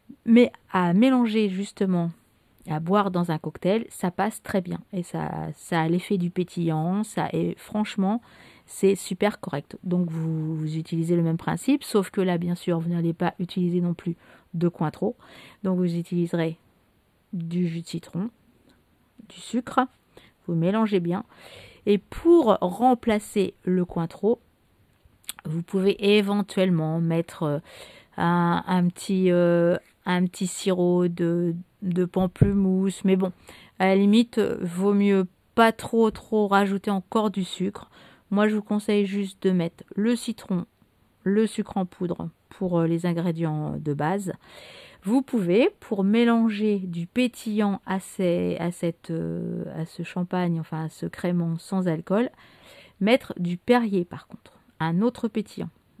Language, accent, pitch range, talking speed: French, French, 170-205 Hz, 145 wpm